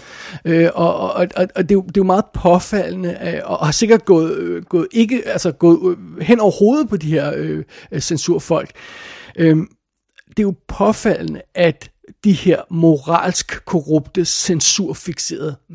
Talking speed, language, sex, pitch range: 155 wpm, Danish, male, 155-180 Hz